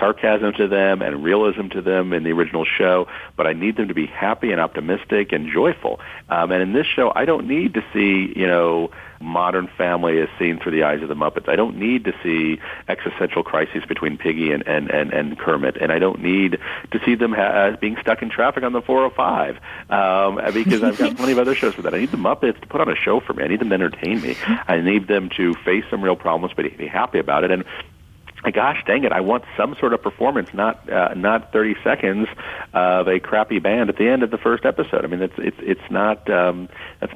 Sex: male